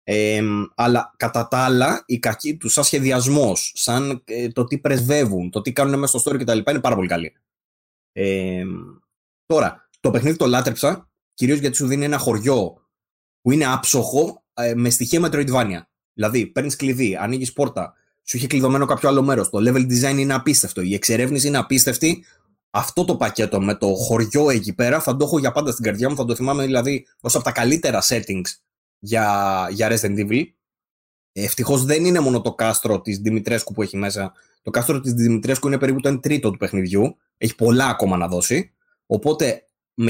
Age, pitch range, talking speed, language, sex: 20-39, 105-135 Hz, 180 wpm, Greek, male